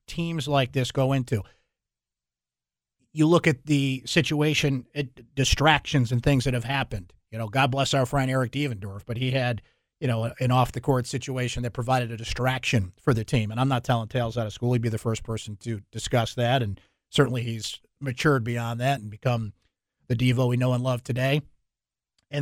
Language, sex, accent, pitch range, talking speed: English, male, American, 115-145 Hz, 200 wpm